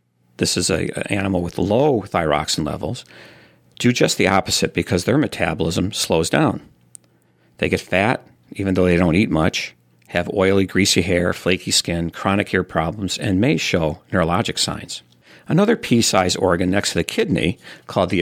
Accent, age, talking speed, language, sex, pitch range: American, 50-69, 165 wpm, English, male, 85-105 Hz